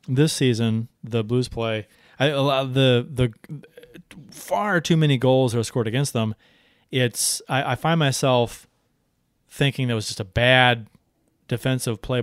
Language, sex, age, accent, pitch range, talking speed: English, male, 30-49, American, 115-145 Hz, 160 wpm